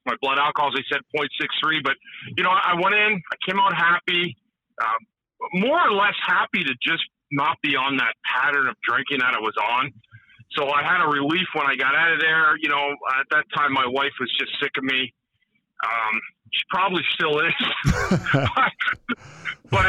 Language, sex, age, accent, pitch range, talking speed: English, male, 40-59, American, 145-195 Hz, 190 wpm